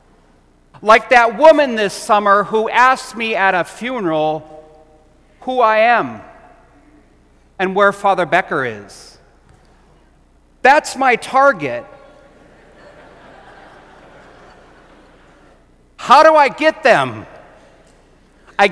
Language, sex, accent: English, male, American